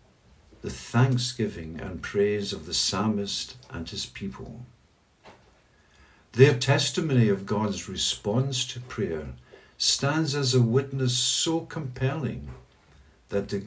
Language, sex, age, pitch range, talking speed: English, male, 60-79, 100-125 Hz, 110 wpm